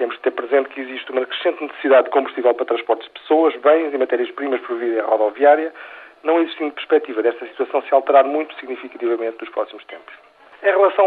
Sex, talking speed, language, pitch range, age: male, 190 wpm, Portuguese, 135-180 Hz, 40-59